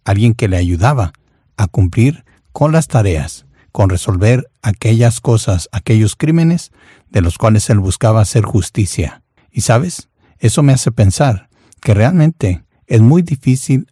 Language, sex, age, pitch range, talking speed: Spanish, male, 60-79, 100-130 Hz, 140 wpm